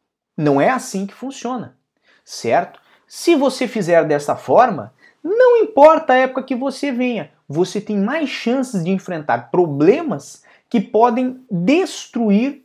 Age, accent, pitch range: 30-49, Brazilian, 135-220 Hz